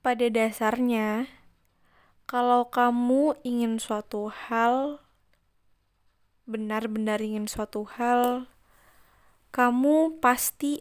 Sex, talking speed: female, 70 wpm